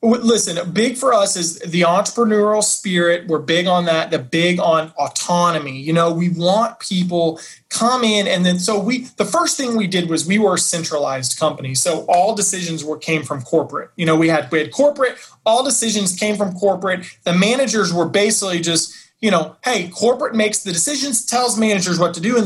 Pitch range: 165-215 Hz